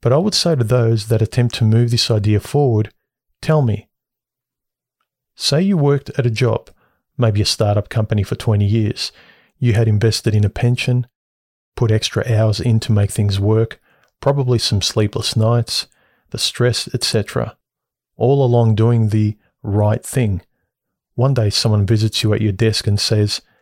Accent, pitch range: Australian, 105-125 Hz